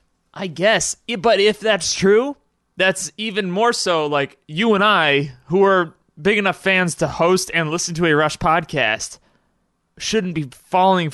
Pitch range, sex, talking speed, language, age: 130-175 Hz, male, 160 wpm, English, 20-39